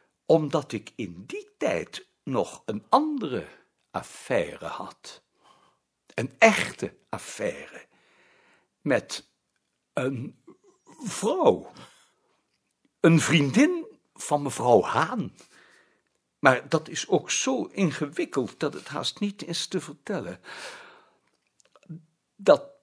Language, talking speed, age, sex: Dutch, 90 wpm, 60-79, male